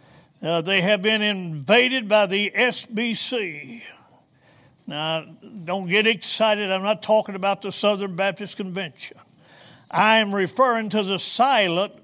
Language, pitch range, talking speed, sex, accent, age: English, 170-215 Hz, 130 wpm, male, American, 60-79